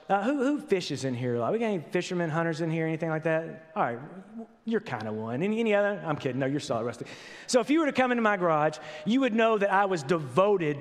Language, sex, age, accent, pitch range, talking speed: English, male, 30-49, American, 165-230 Hz, 280 wpm